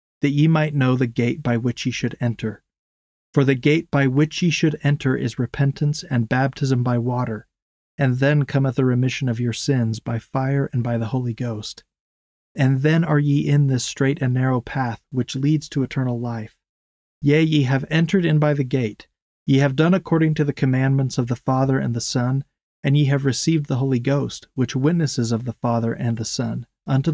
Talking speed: 205 wpm